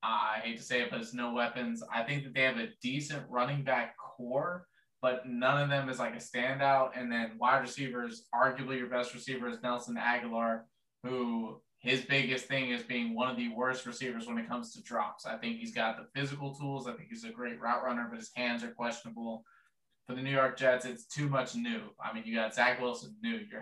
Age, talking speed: 20-39, 230 wpm